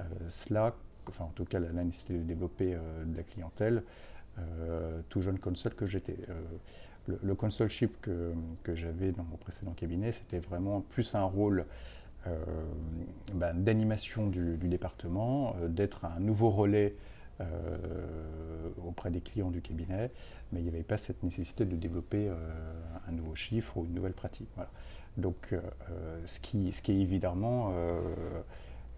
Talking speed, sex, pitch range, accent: 165 wpm, male, 85-100 Hz, French